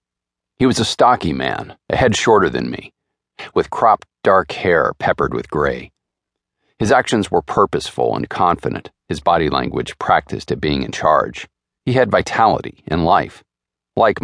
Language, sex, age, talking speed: English, male, 40-59, 155 wpm